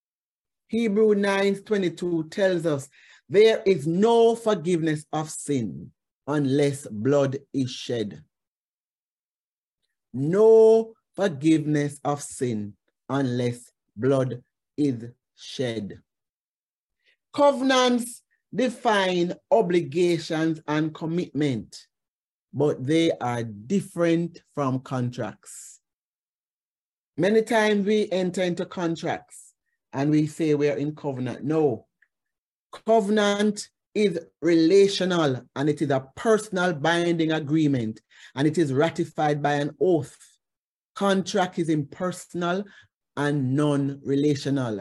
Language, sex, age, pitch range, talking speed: English, male, 50-69, 140-185 Hz, 95 wpm